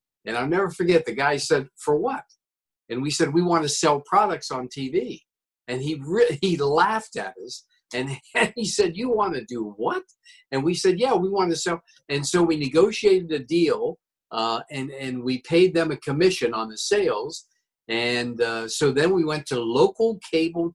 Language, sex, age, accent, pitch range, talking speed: English, male, 50-69, American, 130-190 Hz, 195 wpm